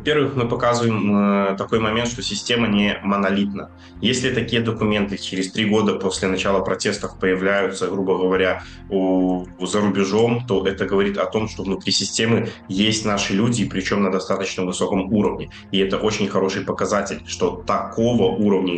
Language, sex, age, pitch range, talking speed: Russian, male, 20-39, 95-115 Hz, 150 wpm